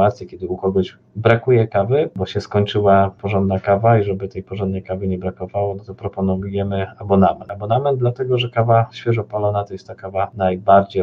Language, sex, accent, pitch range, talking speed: Polish, male, native, 95-105 Hz, 170 wpm